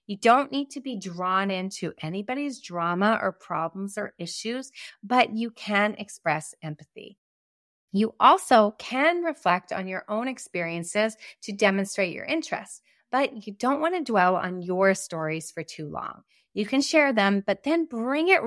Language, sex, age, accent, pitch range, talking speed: English, female, 30-49, American, 175-235 Hz, 160 wpm